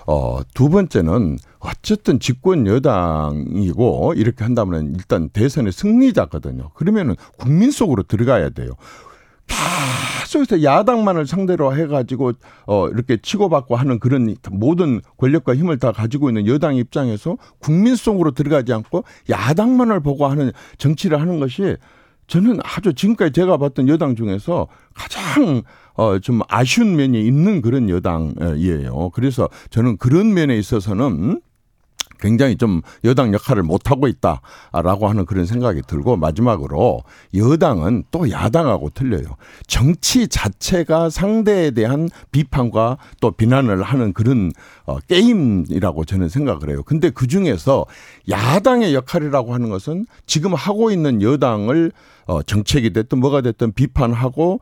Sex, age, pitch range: male, 50-69, 110-165 Hz